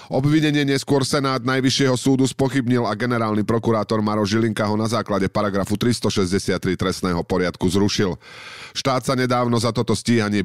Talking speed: 145 wpm